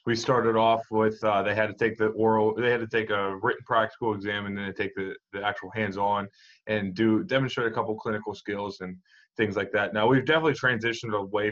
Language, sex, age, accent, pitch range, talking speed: English, male, 20-39, American, 100-115 Hz, 220 wpm